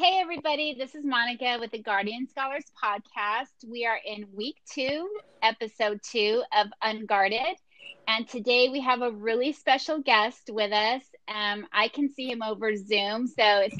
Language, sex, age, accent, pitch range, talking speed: English, female, 30-49, American, 210-255 Hz, 165 wpm